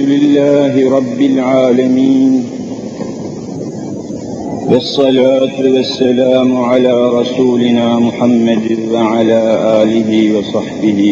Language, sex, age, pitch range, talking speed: Turkish, male, 50-69, 110-135 Hz, 60 wpm